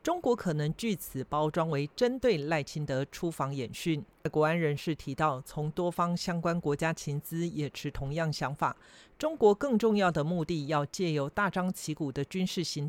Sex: male